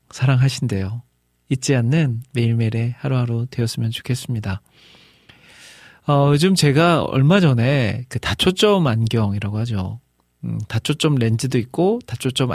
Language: Korean